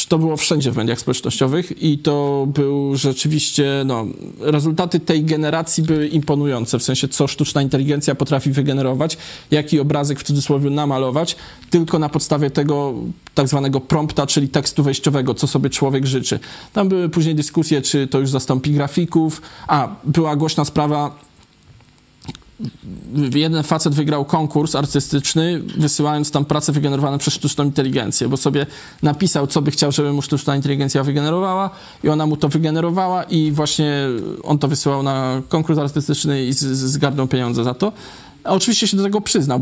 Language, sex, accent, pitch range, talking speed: Polish, male, native, 140-155 Hz, 155 wpm